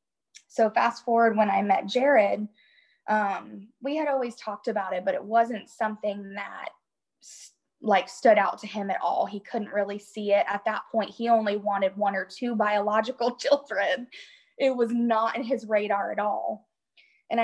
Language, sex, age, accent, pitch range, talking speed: English, female, 10-29, American, 200-235 Hz, 175 wpm